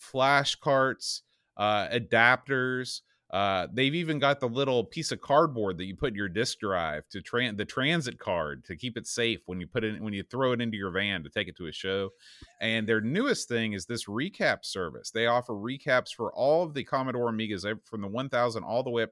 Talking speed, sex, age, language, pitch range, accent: 215 wpm, male, 30-49, English, 100-130 Hz, American